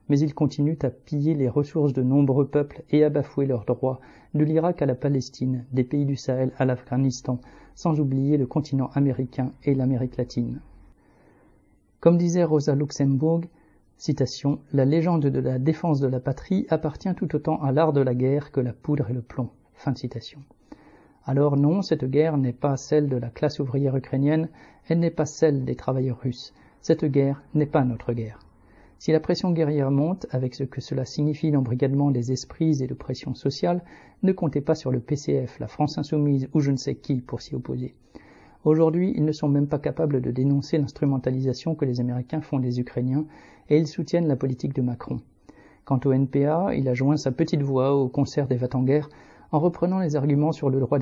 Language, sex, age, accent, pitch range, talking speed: French, male, 40-59, French, 130-150 Hz, 195 wpm